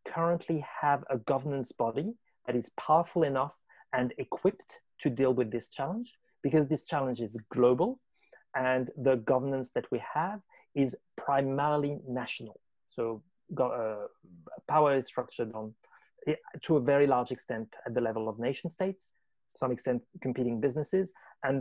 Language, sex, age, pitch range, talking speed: English, male, 30-49, 125-155 Hz, 145 wpm